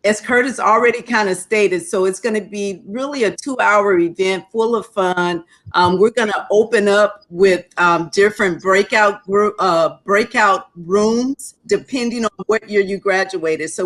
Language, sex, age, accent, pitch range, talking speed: English, female, 50-69, American, 175-215 Hz, 175 wpm